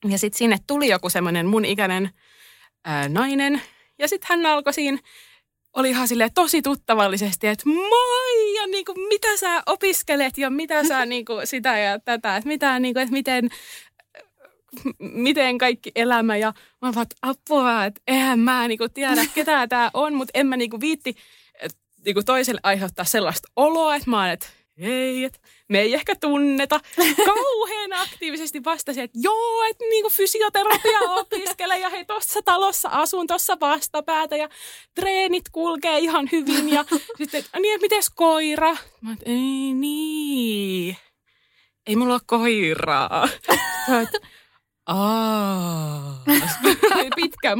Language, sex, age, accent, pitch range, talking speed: Finnish, female, 20-39, native, 220-325 Hz, 130 wpm